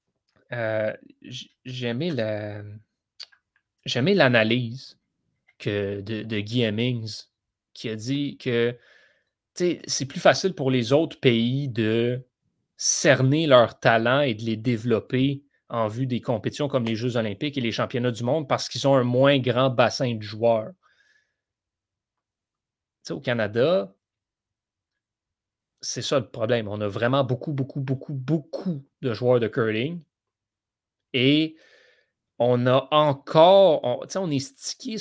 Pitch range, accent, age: 110-140 Hz, Canadian, 30-49